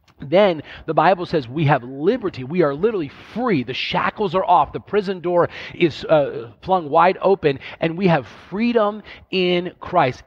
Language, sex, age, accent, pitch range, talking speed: English, male, 40-59, American, 145-190 Hz, 170 wpm